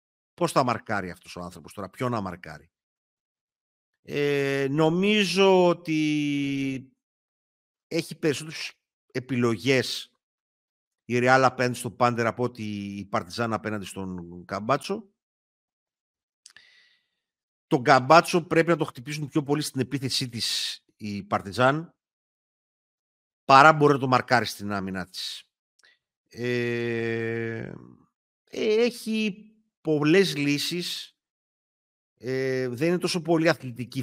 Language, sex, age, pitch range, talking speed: Greek, male, 50-69, 110-150 Hz, 105 wpm